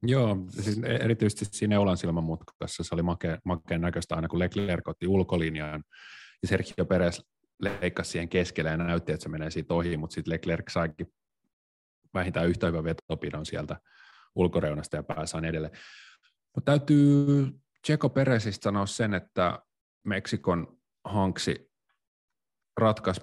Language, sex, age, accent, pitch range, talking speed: Finnish, male, 30-49, native, 80-95 Hz, 130 wpm